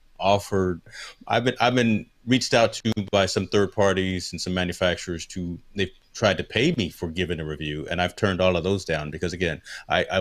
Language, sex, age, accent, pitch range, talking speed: English, male, 30-49, American, 90-105 Hz, 210 wpm